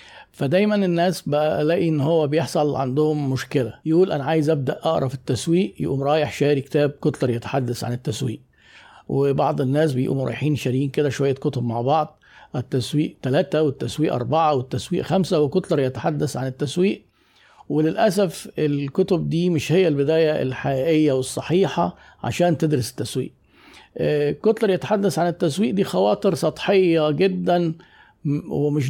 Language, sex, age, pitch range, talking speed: Arabic, male, 50-69, 135-165 Hz, 130 wpm